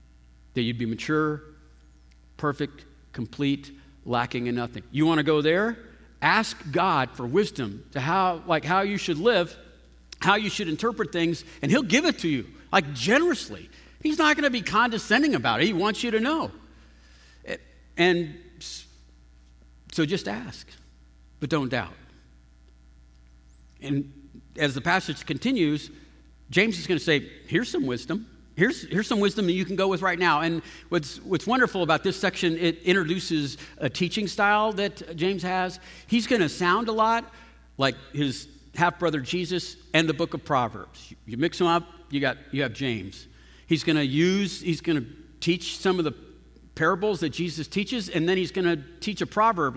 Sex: male